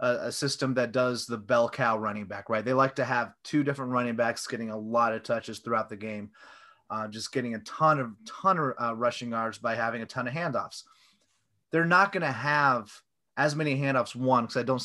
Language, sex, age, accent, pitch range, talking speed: English, male, 30-49, American, 115-150 Hz, 220 wpm